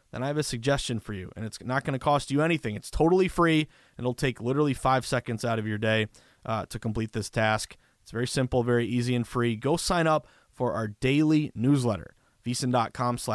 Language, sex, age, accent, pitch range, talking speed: English, male, 30-49, American, 115-145 Hz, 215 wpm